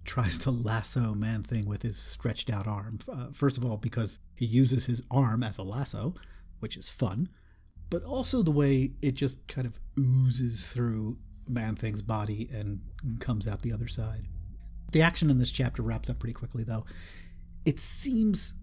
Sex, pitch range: male, 105-130 Hz